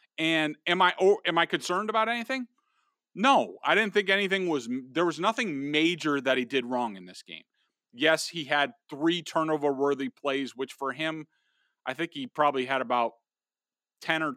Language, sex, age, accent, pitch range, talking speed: English, male, 40-59, American, 135-165 Hz, 180 wpm